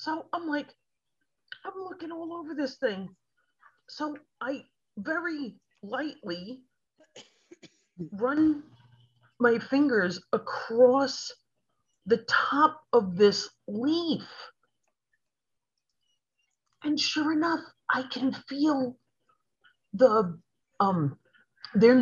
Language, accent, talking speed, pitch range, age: English, American, 85 wpm, 205-300 Hz, 40-59